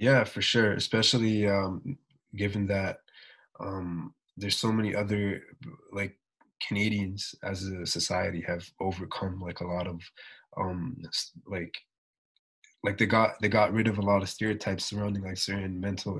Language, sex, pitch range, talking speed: English, male, 95-110 Hz, 150 wpm